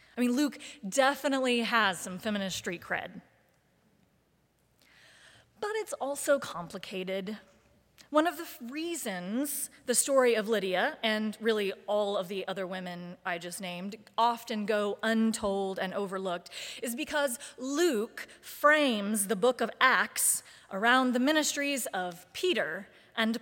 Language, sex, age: English, female, 30-49